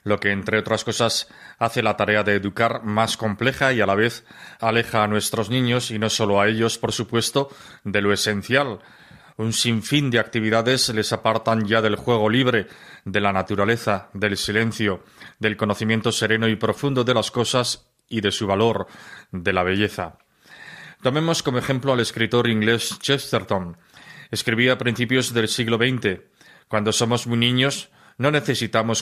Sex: male